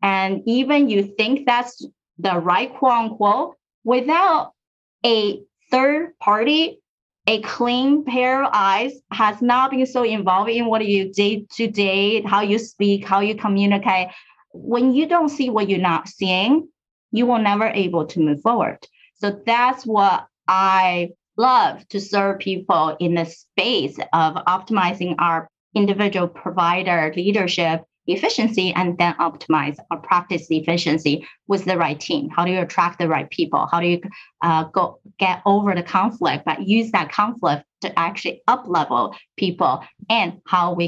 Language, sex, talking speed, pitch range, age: English, female, 155 wpm, 175-225 Hz, 30-49